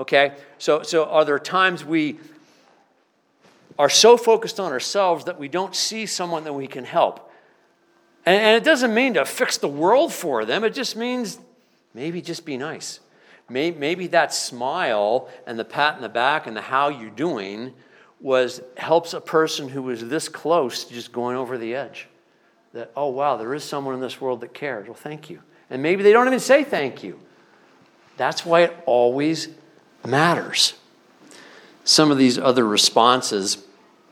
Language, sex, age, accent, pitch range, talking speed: English, male, 50-69, American, 110-165 Hz, 175 wpm